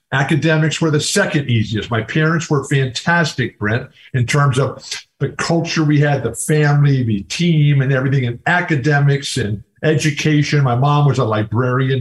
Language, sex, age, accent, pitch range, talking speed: English, male, 50-69, American, 125-160 Hz, 160 wpm